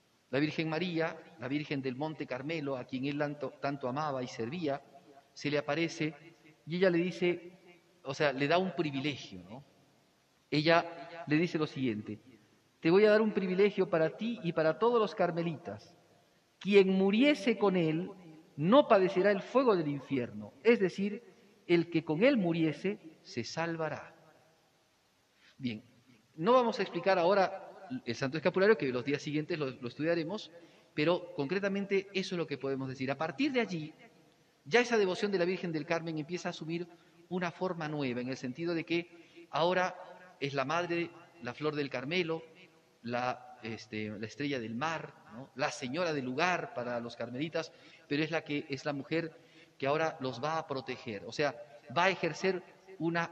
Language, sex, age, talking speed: Spanish, male, 40-59, 175 wpm